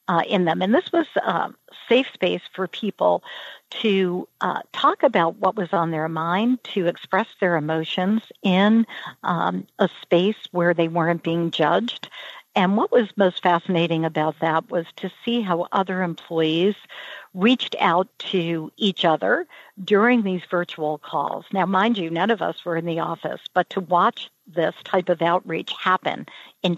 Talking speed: 165 wpm